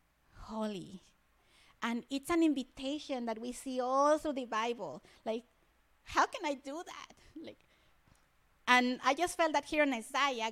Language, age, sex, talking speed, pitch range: English, 30-49, female, 155 wpm, 215-265 Hz